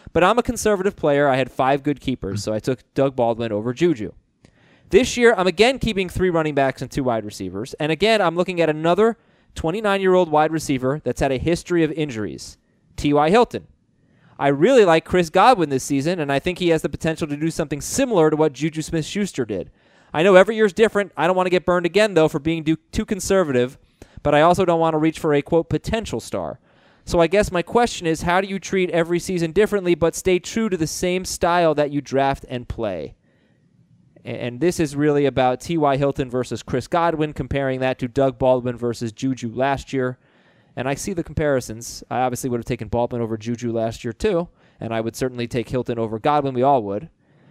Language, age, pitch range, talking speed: English, 20-39, 130-175 Hz, 215 wpm